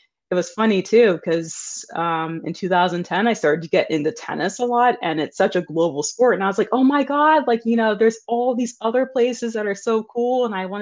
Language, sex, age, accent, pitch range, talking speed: English, female, 20-39, American, 175-230 Hz, 240 wpm